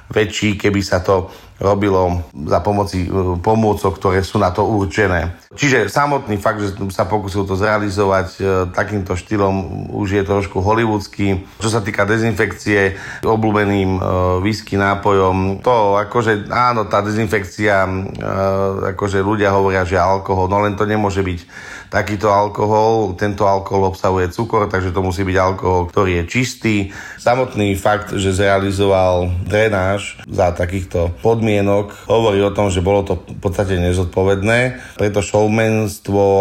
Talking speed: 140 wpm